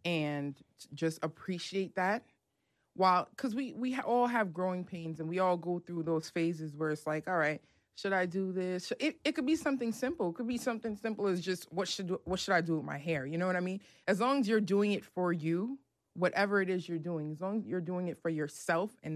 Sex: female